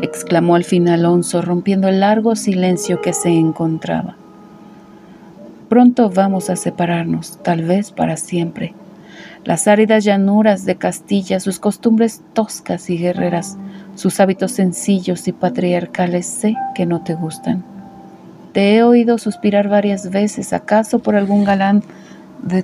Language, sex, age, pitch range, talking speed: Spanish, female, 40-59, 175-205 Hz, 135 wpm